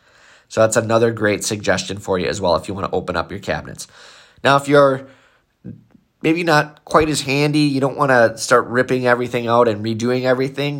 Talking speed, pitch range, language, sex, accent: 200 wpm, 110-125 Hz, English, male, American